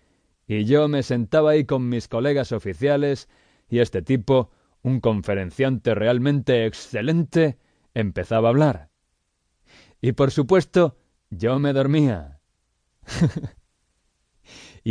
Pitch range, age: 110-145 Hz, 30-49